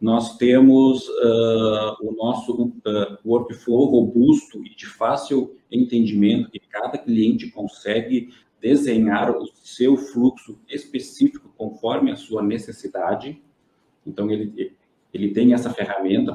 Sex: male